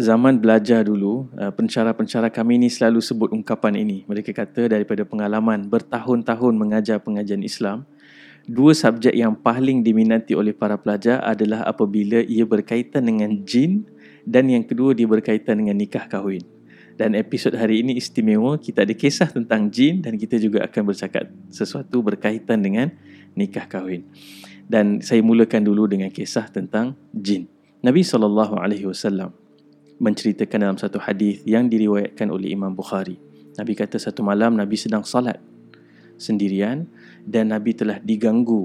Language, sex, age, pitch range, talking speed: Malay, male, 30-49, 105-120 Hz, 140 wpm